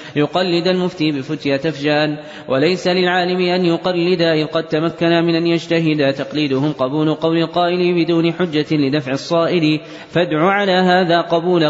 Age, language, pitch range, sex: 30-49, Arabic, 135-160 Hz, male